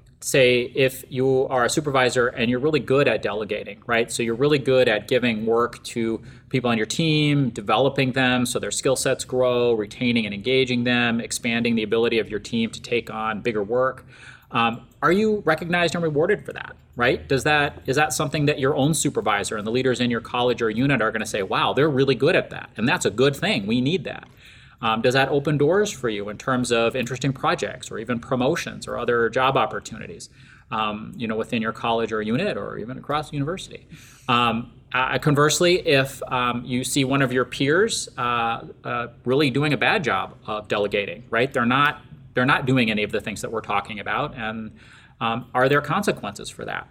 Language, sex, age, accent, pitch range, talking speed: English, male, 30-49, American, 115-140 Hz, 205 wpm